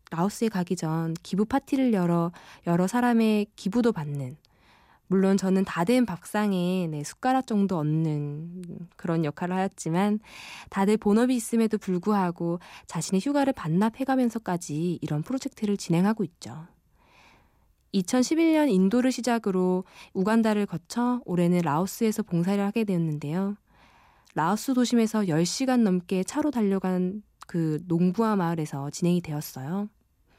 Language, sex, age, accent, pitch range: Korean, female, 20-39, native, 175-225 Hz